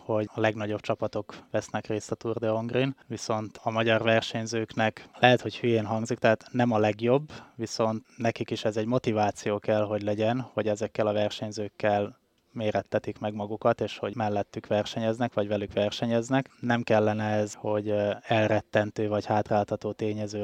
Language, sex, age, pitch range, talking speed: Hungarian, male, 20-39, 105-115 Hz, 155 wpm